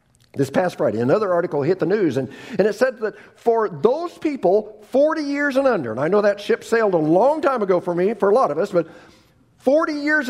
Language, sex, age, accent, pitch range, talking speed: English, male, 50-69, American, 145-230 Hz, 235 wpm